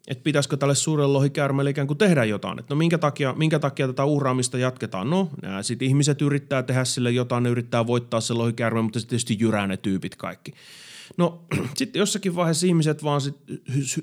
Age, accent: 30-49, native